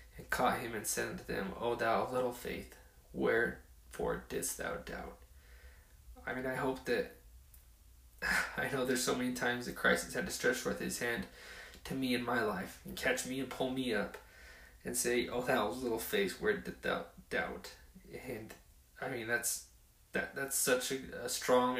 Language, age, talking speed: English, 20-39, 190 wpm